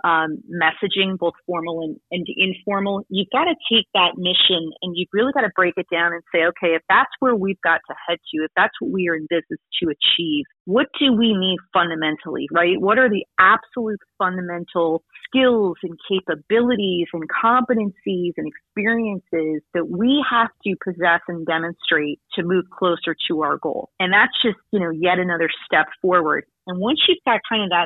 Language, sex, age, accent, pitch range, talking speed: English, female, 30-49, American, 170-205 Hz, 185 wpm